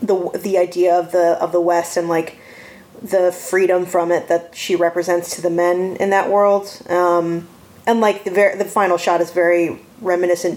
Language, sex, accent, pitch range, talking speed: English, female, American, 175-200 Hz, 195 wpm